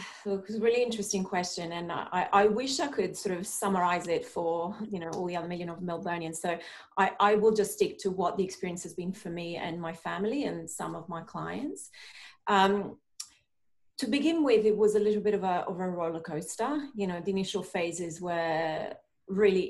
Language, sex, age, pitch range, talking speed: English, female, 30-49, 170-205 Hz, 215 wpm